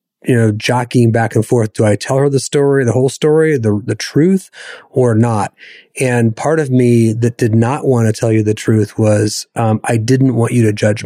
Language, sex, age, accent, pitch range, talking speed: English, male, 30-49, American, 110-125 Hz, 220 wpm